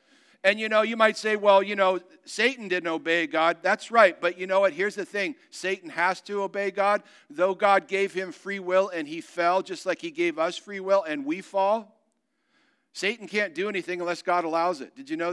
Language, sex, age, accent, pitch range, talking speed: English, male, 50-69, American, 175-265 Hz, 225 wpm